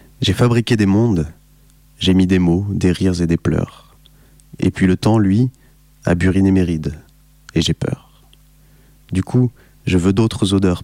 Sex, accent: male, French